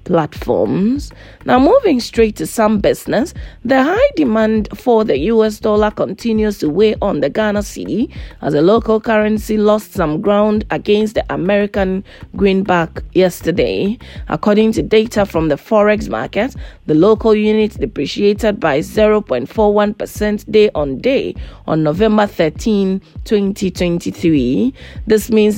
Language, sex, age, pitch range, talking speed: English, female, 30-49, 195-220 Hz, 130 wpm